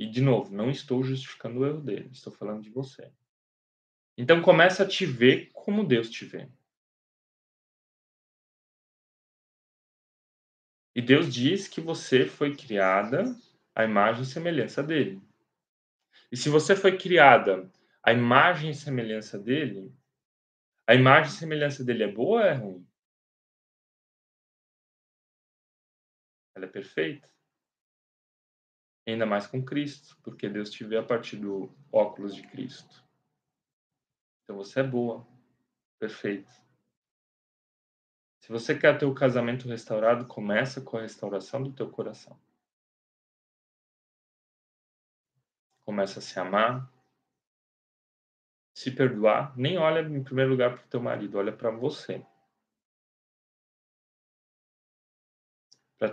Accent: Brazilian